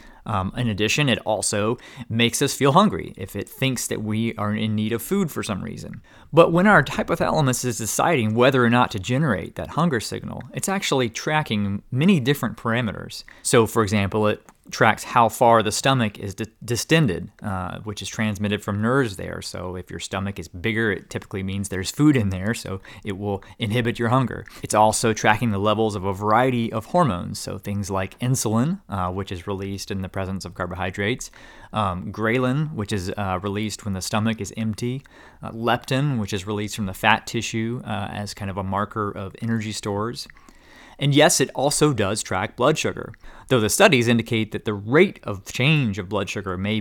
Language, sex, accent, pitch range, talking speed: English, male, American, 100-125 Hz, 195 wpm